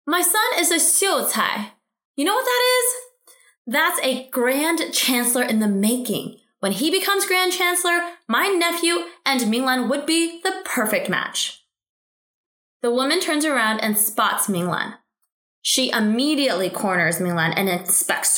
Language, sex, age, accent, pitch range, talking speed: English, female, 20-39, American, 210-330 Hz, 145 wpm